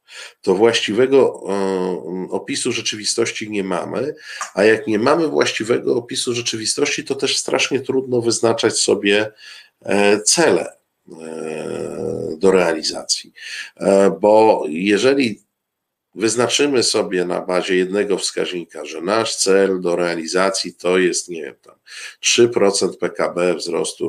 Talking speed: 105 wpm